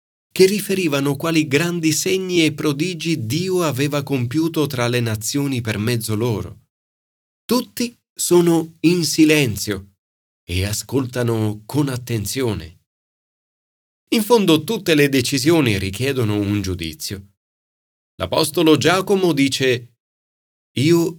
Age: 30-49